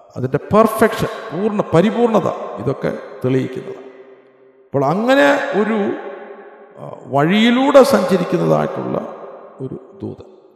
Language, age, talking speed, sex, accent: Malayalam, 50-69, 75 wpm, male, native